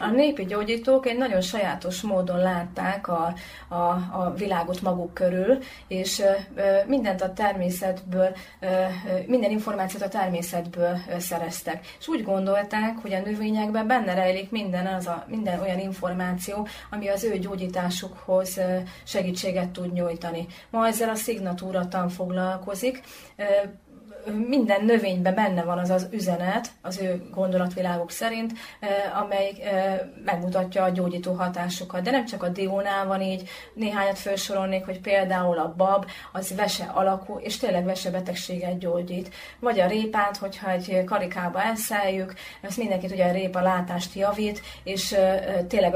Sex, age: female, 30-49